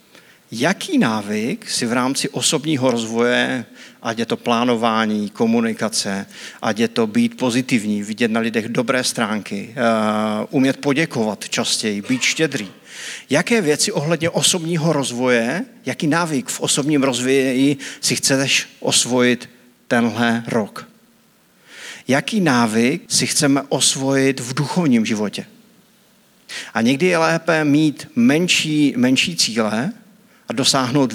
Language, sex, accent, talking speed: Czech, male, native, 115 wpm